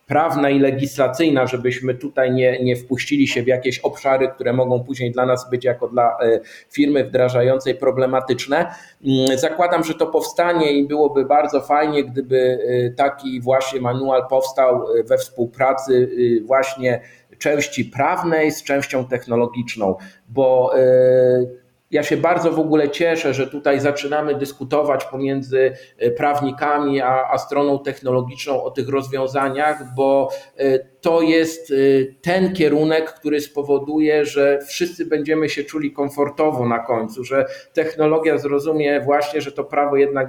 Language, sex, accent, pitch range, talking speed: Polish, male, native, 130-150 Hz, 130 wpm